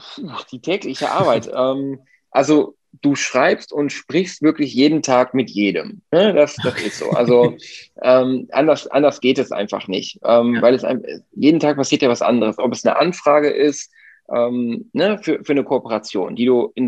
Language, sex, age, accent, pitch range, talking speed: German, male, 20-39, German, 110-135 Hz, 155 wpm